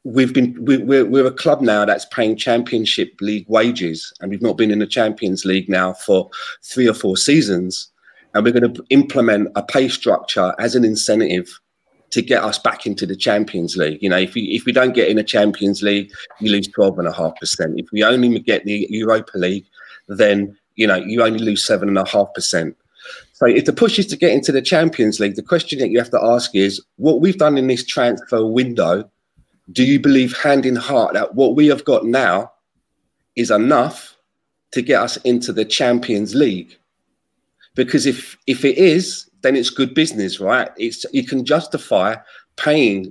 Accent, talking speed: British, 190 wpm